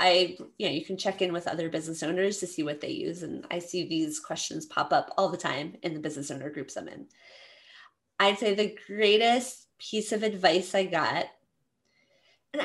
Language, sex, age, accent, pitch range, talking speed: English, female, 20-39, American, 180-220 Hz, 205 wpm